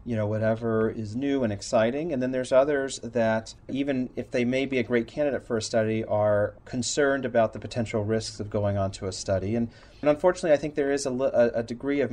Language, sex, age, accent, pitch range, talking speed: English, male, 40-59, American, 105-120 Hz, 230 wpm